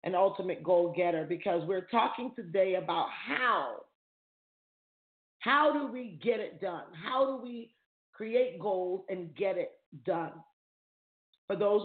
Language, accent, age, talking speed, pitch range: English, American, 40-59, 135 wpm, 190-240 Hz